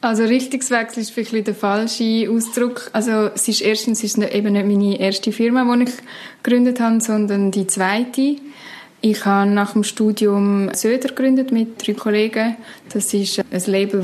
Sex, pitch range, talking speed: female, 190-215 Hz, 170 wpm